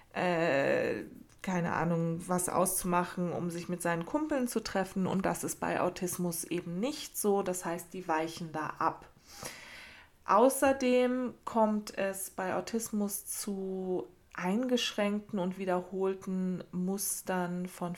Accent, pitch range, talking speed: German, 175-205 Hz, 120 wpm